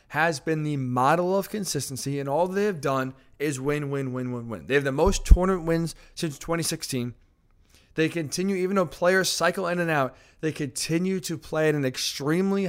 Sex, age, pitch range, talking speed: male, 20-39, 145-190 Hz, 195 wpm